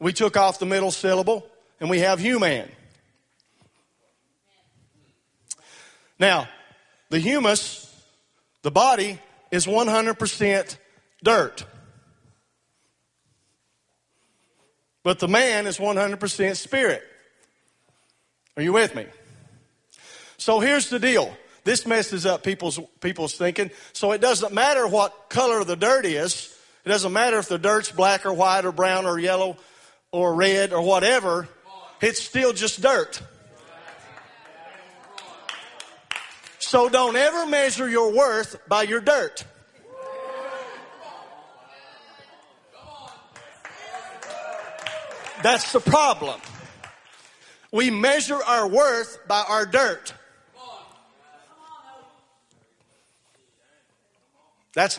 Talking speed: 100 wpm